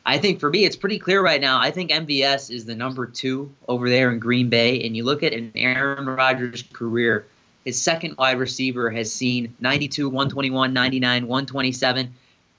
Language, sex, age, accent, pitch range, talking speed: English, male, 20-39, American, 115-130 Hz, 185 wpm